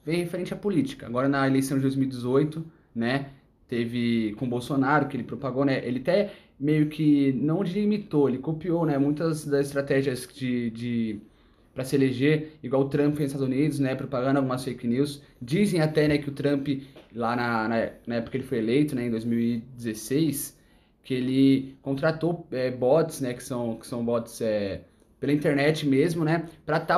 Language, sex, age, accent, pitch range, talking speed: Portuguese, male, 20-39, Brazilian, 125-160 Hz, 180 wpm